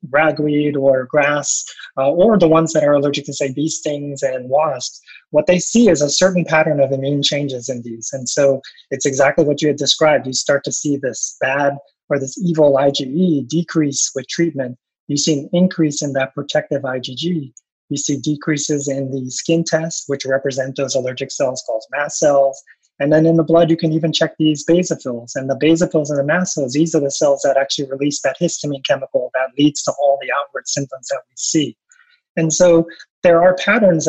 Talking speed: 200 wpm